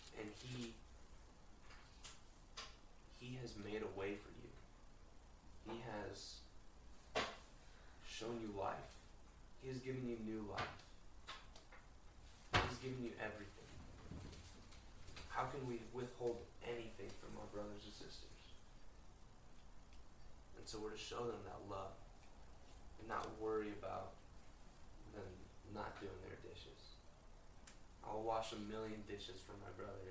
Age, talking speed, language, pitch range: 20-39, 120 wpm, English, 95-125 Hz